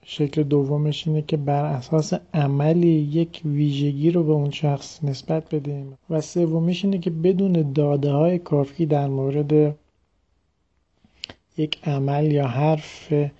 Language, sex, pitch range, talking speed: Persian, male, 135-155 Hz, 130 wpm